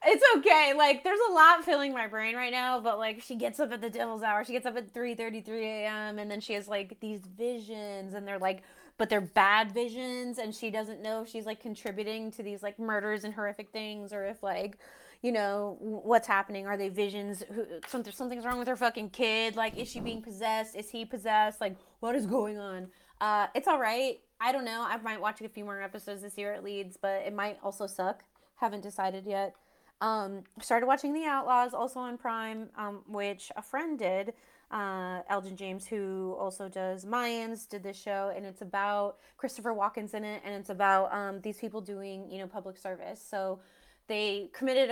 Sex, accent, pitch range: female, American, 195-230 Hz